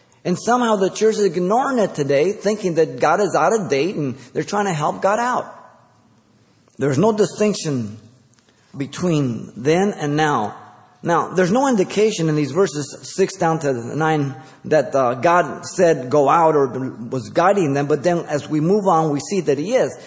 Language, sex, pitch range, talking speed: English, male, 140-195 Hz, 180 wpm